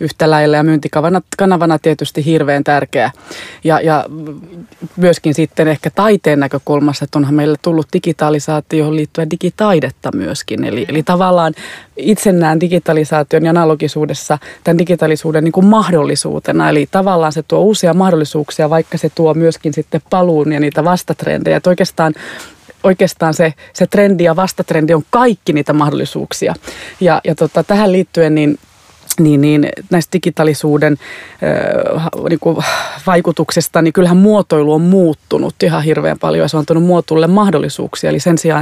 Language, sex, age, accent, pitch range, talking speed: Finnish, female, 20-39, native, 155-175 Hz, 140 wpm